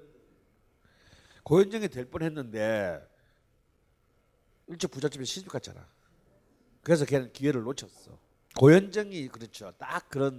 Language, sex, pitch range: Korean, male, 105-140 Hz